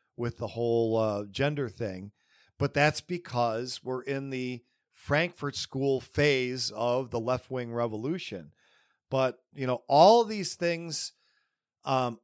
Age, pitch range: 50-69, 120-155 Hz